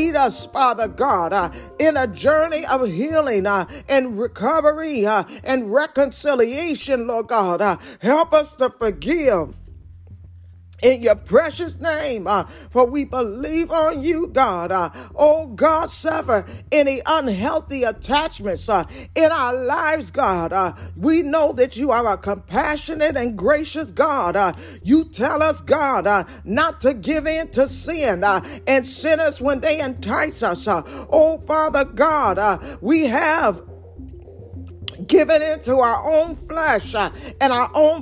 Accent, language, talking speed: American, English, 135 wpm